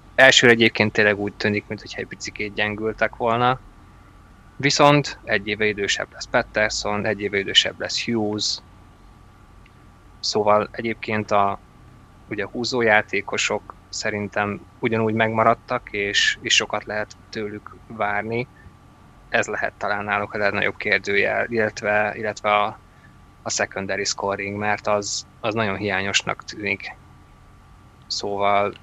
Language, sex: Hungarian, male